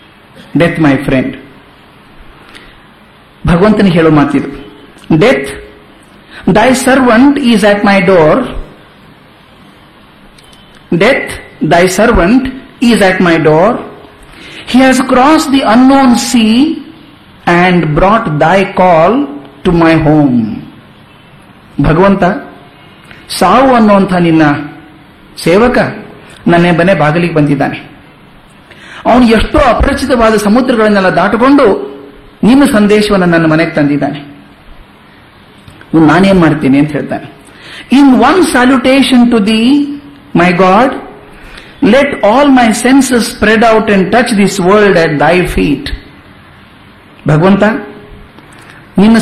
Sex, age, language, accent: male, 50-69, Kannada, native